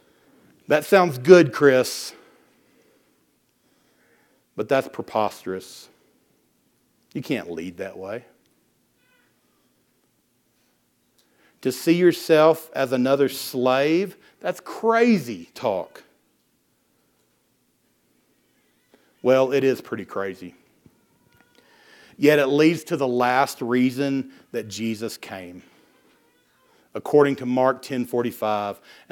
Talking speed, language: 80 wpm, English